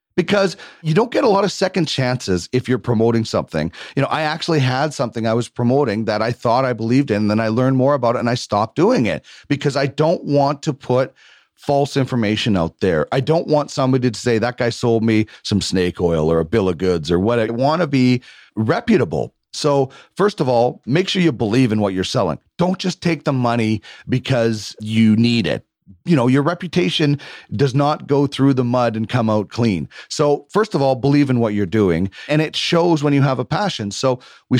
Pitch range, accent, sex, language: 115-150 Hz, American, male, English